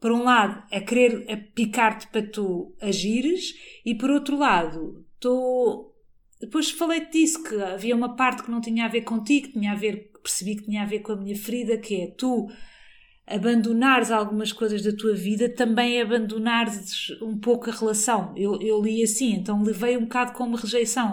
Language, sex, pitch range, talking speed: Portuguese, female, 210-250 Hz, 190 wpm